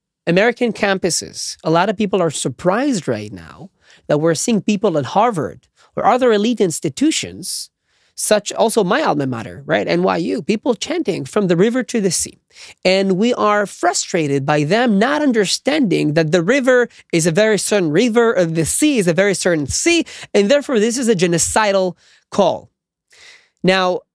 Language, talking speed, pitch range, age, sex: English, 165 wpm, 170-235 Hz, 30-49, male